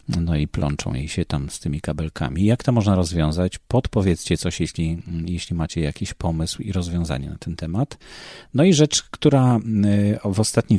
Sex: male